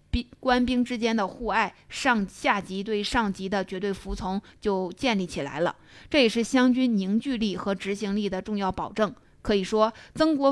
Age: 20-39